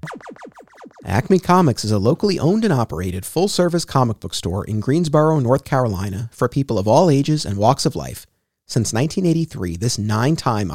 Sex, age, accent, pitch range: male, 40-59, American, 110-155 Hz